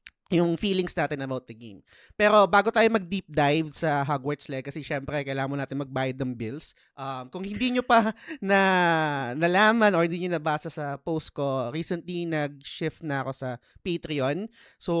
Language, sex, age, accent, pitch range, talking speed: Filipino, male, 20-39, native, 135-165 Hz, 165 wpm